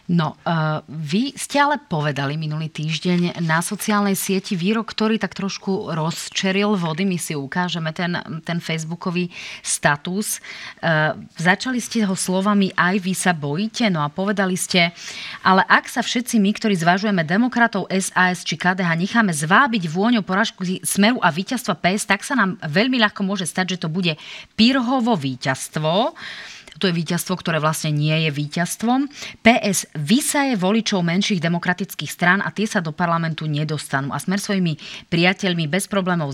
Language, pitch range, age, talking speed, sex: Slovak, 165-205 Hz, 30-49, 155 wpm, female